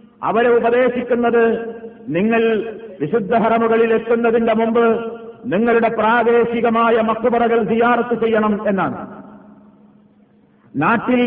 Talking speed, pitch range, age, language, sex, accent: 75 wpm, 230-245 Hz, 50-69, Malayalam, male, native